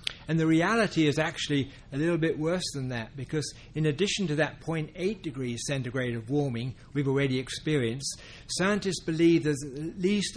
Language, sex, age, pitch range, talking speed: English, male, 60-79, 135-170 Hz, 170 wpm